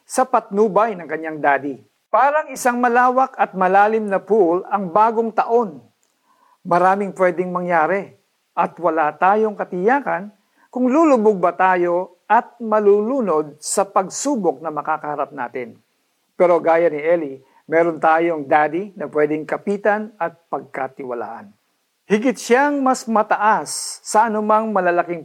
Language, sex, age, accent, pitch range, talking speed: Filipino, male, 50-69, native, 155-220 Hz, 125 wpm